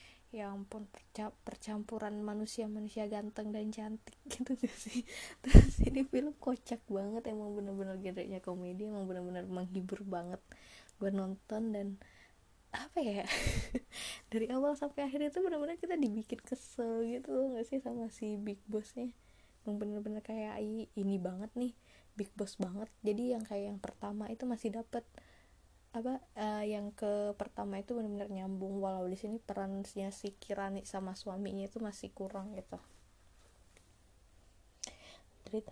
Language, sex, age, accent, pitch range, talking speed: English, female, 20-39, Indonesian, 195-235 Hz, 140 wpm